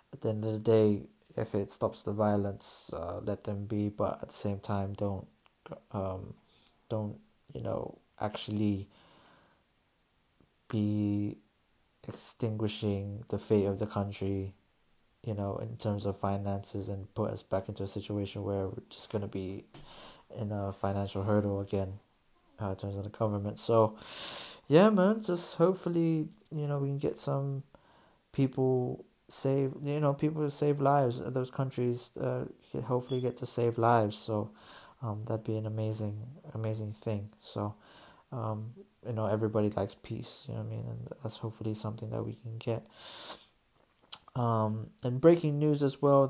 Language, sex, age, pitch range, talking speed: English, male, 20-39, 105-130 Hz, 160 wpm